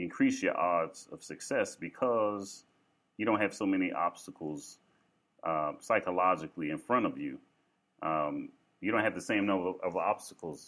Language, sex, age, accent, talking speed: English, male, 30-49, American, 150 wpm